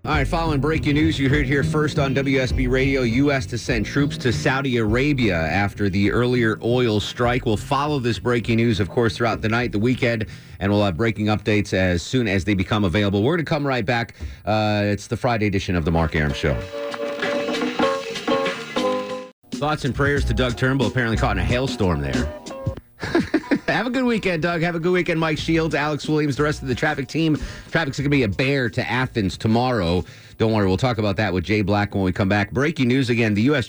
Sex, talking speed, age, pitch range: male, 215 wpm, 30-49, 105-140 Hz